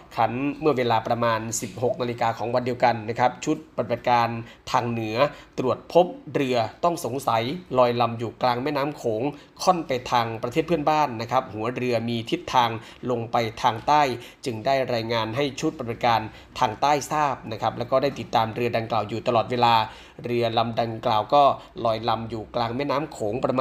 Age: 20-39